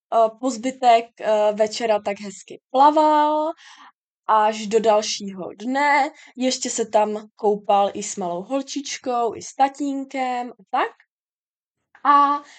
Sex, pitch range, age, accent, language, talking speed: female, 220-295 Hz, 20-39, native, Czech, 110 wpm